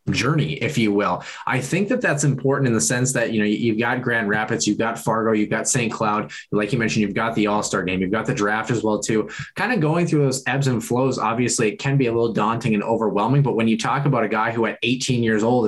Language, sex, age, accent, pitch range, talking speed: English, male, 20-39, American, 110-135 Hz, 270 wpm